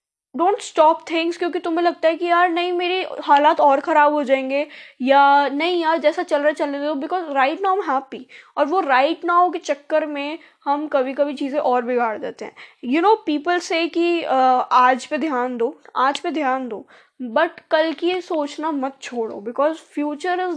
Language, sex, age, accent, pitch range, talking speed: Hindi, female, 10-29, native, 270-330 Hz, 200 wpm